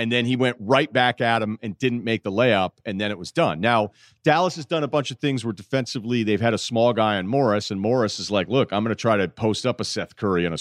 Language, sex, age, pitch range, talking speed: English, male, 40-59, 105-130 Hz, 295 wpm